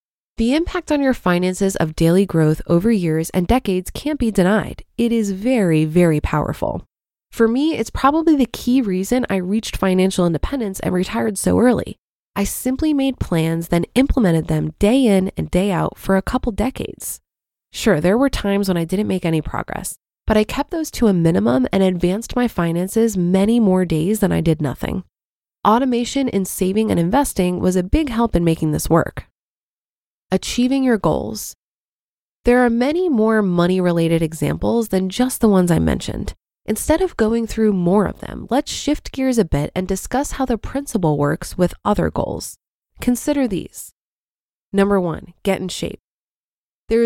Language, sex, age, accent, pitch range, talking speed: English, female, 20-39, American, 180-245 Hz, 175 wpm